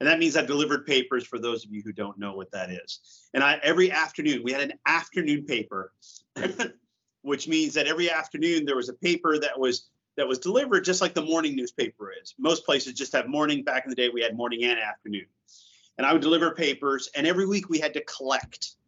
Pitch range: 125-175 Hz